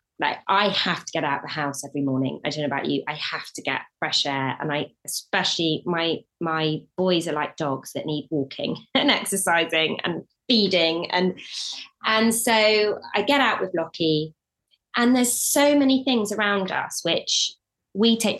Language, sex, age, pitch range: English, female, 20-39, 150-205 Hz